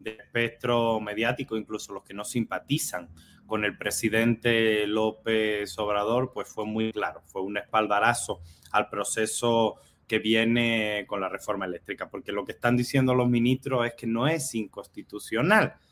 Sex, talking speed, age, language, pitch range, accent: male, 150 wpm, 30-49, Spanish, 110-140 Hz, Mexican